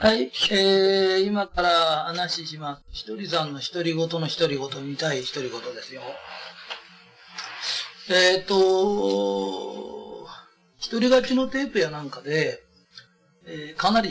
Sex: male